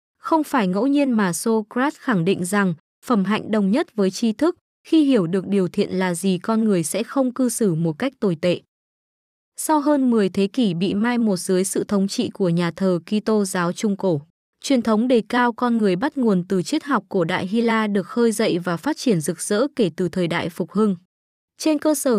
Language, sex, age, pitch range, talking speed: Vietnamese, female, 20-39, 190-245 Hz, 225 wpm